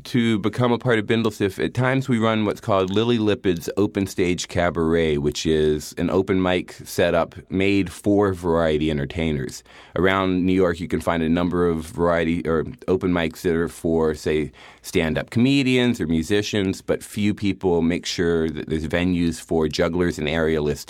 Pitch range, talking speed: 80-100 Hz, 170 wpm